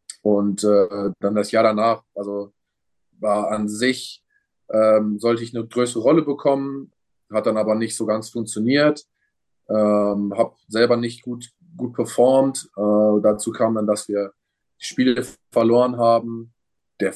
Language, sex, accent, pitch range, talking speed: German, male, German, 105-125 Hz, 145 wpm